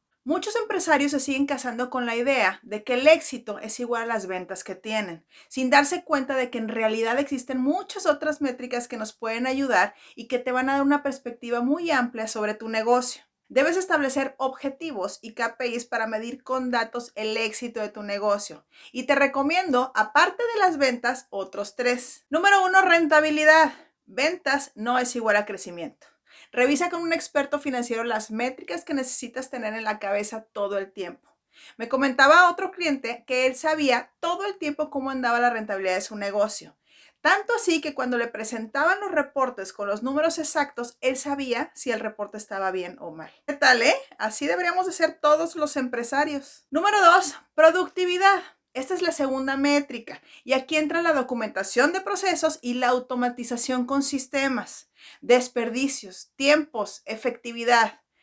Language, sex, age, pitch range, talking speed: Spanish, female, 40-59, 230-300 Hz, 170 wpm